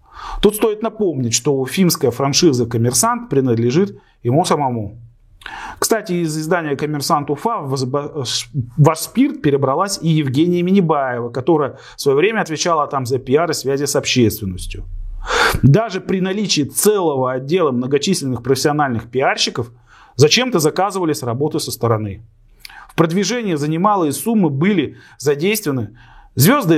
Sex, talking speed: male, 125 wpm